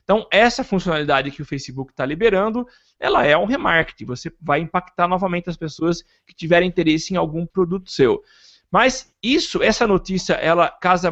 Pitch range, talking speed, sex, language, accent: 160-210 Hz, 165 wpm, male, Portuguese, Brazilian